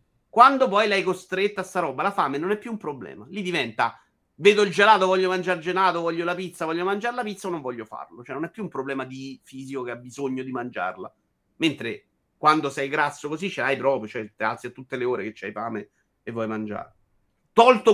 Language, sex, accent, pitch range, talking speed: Italian, male, native, 125-180 Hz, 230 wpm